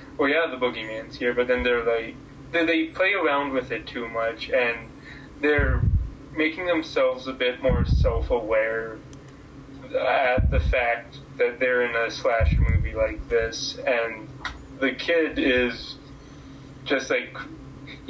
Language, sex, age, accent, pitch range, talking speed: English, male, 20-39, American, 115-150 Hz, 145 wpm